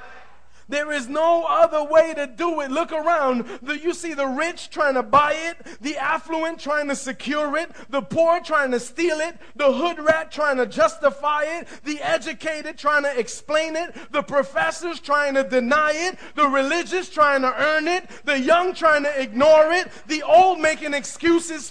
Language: English